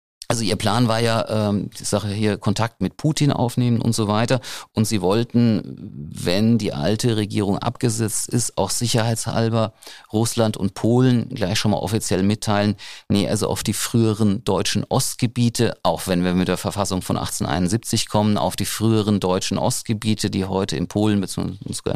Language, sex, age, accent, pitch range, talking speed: German, male, 50-69, German, 95-115 Hz, 170 wpm